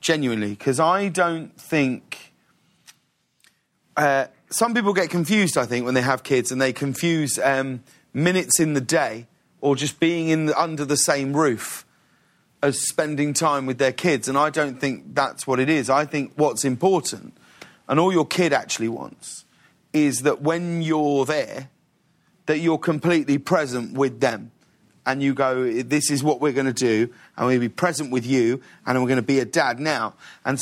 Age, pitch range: 30-49, 130-160 Hz